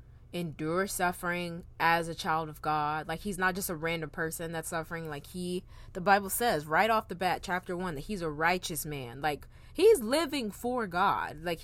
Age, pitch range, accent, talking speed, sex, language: 20-39, 165-215 Hz, American, 195 wpm, female, English